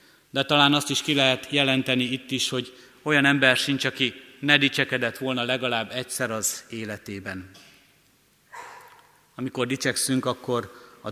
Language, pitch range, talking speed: Hungarian, 120-135 Hz, 135 wpm